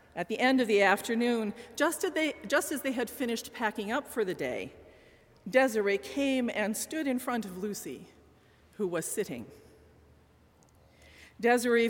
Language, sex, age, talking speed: English, female, 50-69, 145 wpm